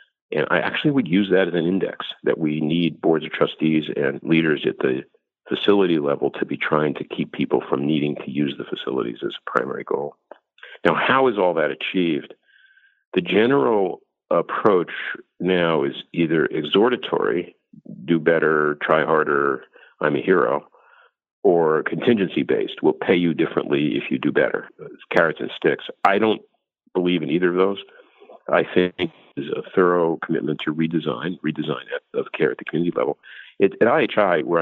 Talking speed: 165 wpm